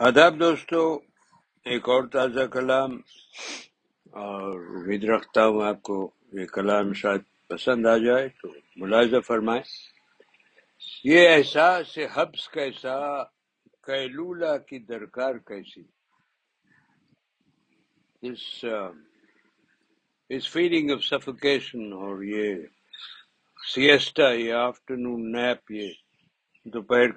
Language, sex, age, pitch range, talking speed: Urdu, male, 60-79, 115-140 Hz, 85 wpm